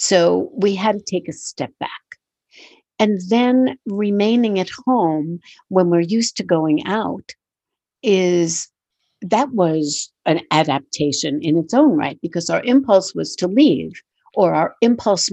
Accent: American